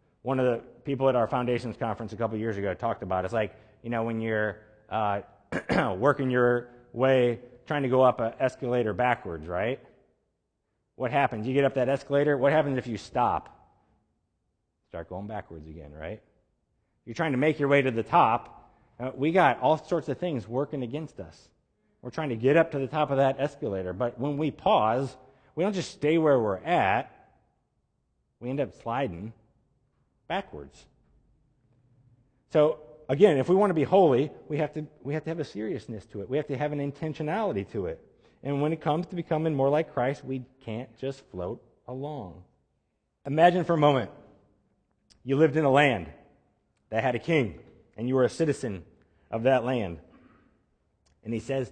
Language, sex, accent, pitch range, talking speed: English, male, American, 110-145 Hz, 185 wpm